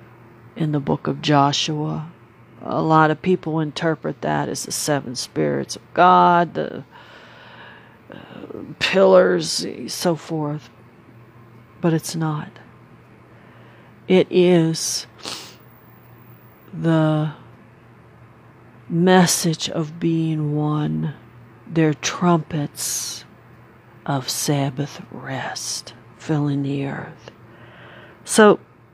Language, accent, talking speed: English, American, 85 wpm